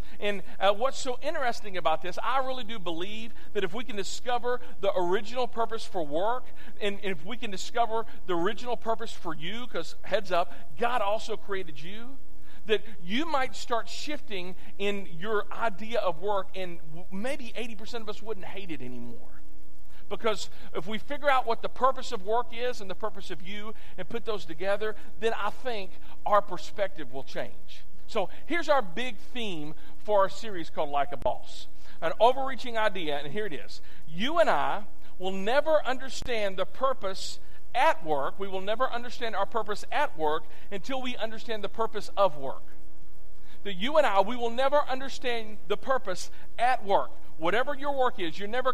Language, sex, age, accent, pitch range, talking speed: English, male, 50-69, American, 180-240 Hz, 180 wpm